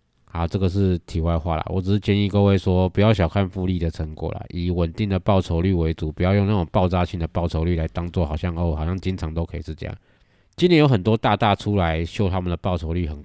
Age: 20-39